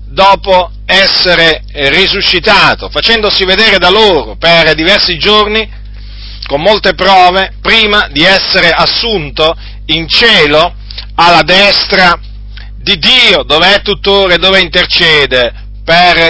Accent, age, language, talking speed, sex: native, 40-59, Italian, 110 wpm, male